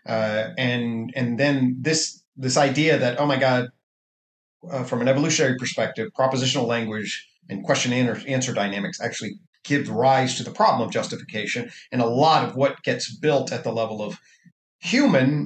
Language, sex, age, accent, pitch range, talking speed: English, male, 50-69, American, 130-180 Hz, 165 wpm